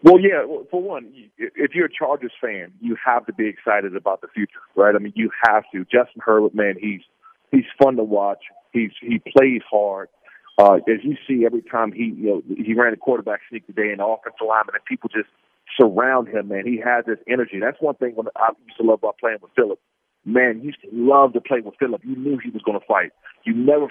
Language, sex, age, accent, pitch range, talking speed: English, male, 40-59, American, 110-145 Hz, 235 wpm